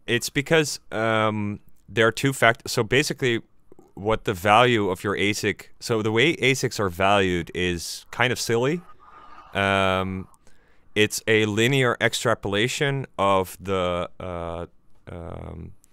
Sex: male